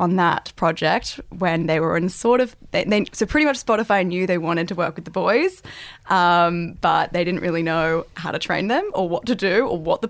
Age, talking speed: 10-29, 225 wpm